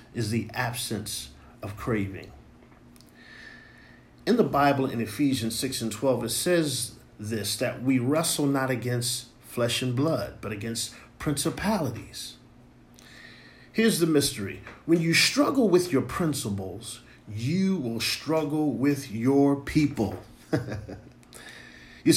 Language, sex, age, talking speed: English, male, 50-69, 115 wpm